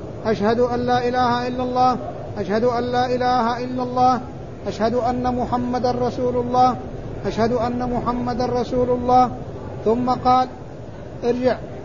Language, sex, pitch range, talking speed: Arabic, male, 235-250 Hz, 125 wpm